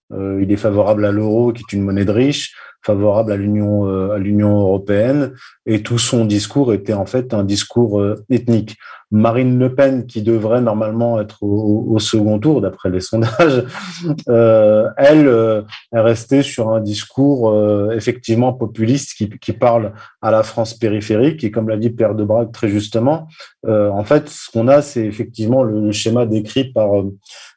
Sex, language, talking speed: male, French, 185 wpm